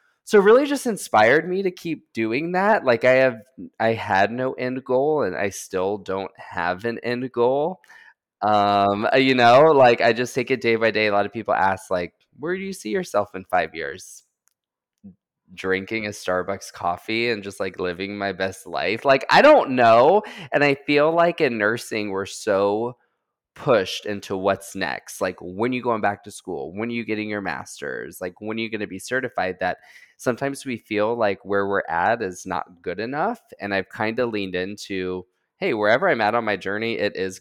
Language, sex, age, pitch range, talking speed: English, male, 20-39, 95-120 Hz, 205 wpm